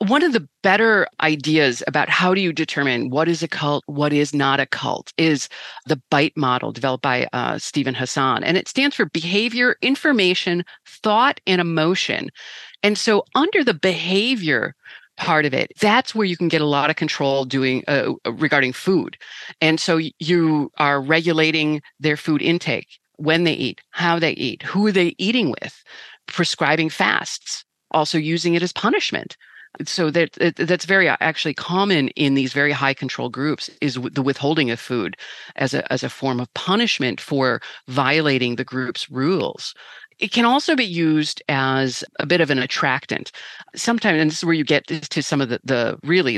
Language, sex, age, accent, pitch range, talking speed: English, female, 40-59, American, 140-185 Hz, 175 wpm